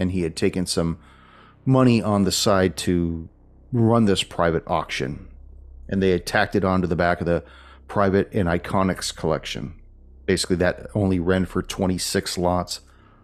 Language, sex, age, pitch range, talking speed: English, male, 40-59, 80-100 Hz, 160 wpm